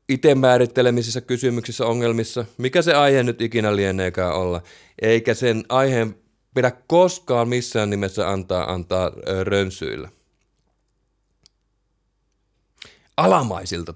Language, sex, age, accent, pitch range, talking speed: Finnish, male, 30-49, native, 90-120 Hz, 95 wpm